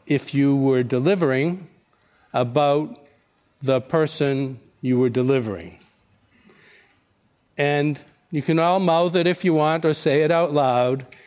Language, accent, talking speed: English, American, 130 wpm